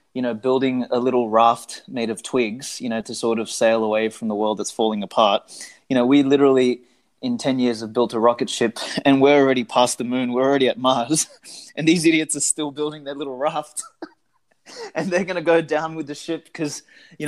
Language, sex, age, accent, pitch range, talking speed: English, male, 20-39, Australian, 120-150 Hz, 220 wpm